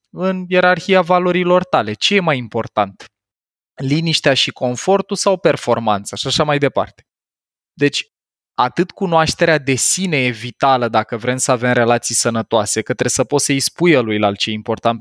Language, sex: Romanian, male